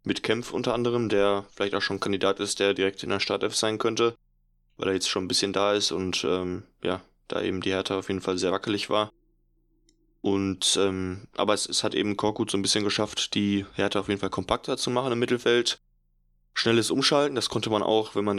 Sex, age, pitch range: male, 20-39, 90-105 Hz